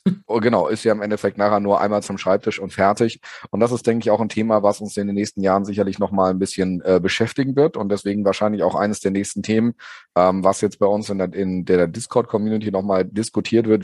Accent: German